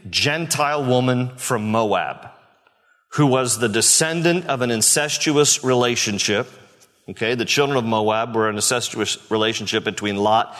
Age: 50-69